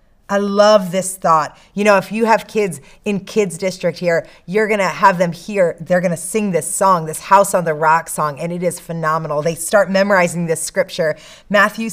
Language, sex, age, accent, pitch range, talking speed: English, female, 30-49, American, 160-205 Hz, 200 wpm